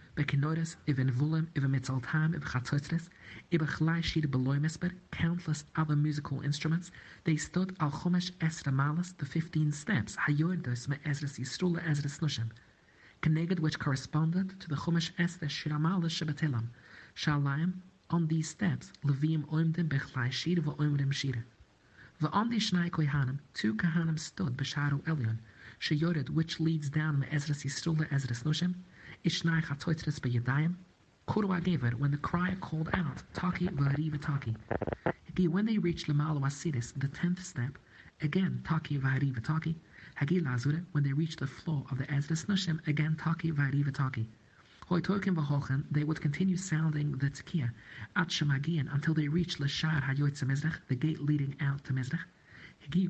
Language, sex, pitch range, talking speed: English, male, 140-170 Hz, 130 wpm